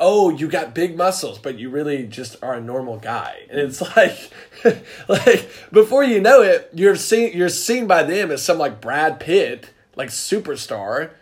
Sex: male